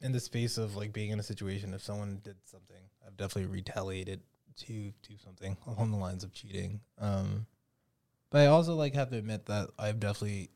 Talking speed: 200 wpm